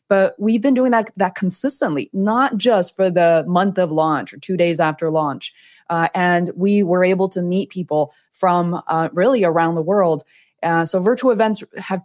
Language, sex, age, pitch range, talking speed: English, female, 20-39, 170-205 Hz, 190 wpm